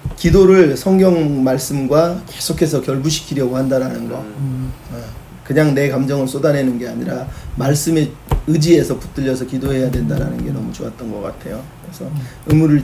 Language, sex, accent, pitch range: Korean, male, native, 130-155 Hz